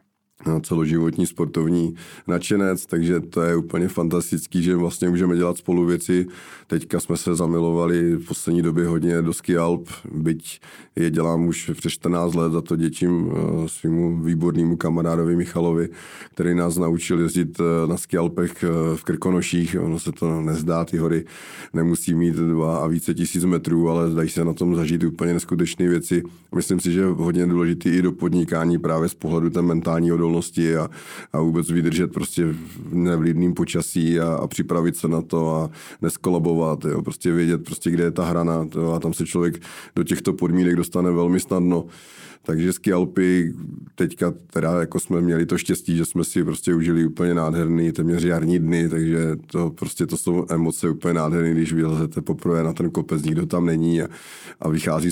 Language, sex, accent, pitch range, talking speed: Czech, male, native, 80-85 Hz, 170 wpm